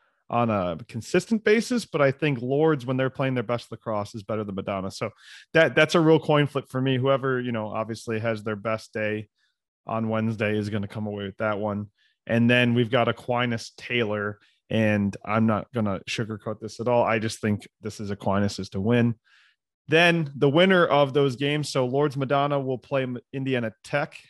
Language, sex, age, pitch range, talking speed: English, male, 30-49, 110-140 Hz, 205 wpm